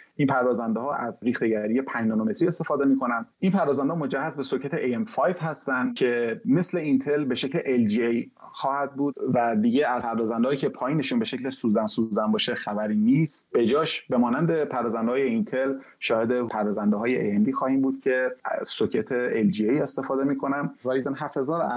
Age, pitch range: 30-49, 120-160 Hz